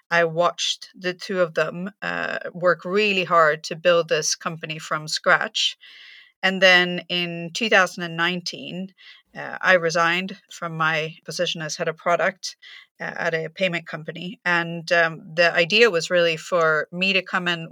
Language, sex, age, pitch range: English, female, 30-49, 165-185 Hz